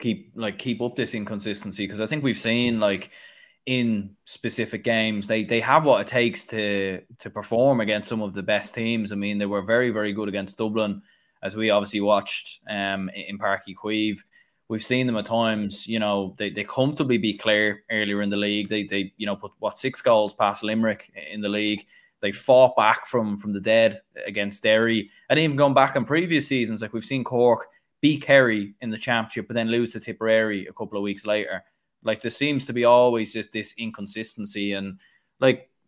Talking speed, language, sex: 205 wpm, English, male